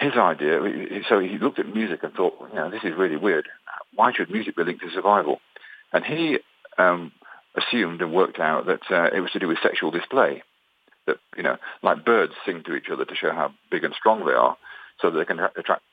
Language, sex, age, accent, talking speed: English, male, 50-69, British, 220 wpm